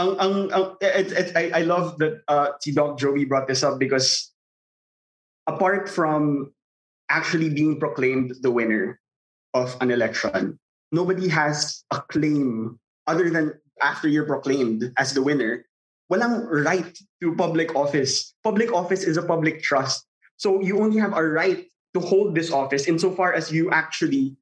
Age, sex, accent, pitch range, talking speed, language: 20-39, male, native, 140-165 Hz, 150 wpm, Filipino